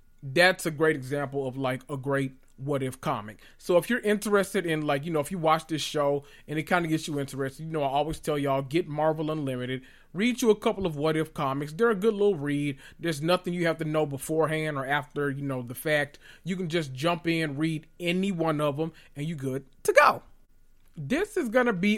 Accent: American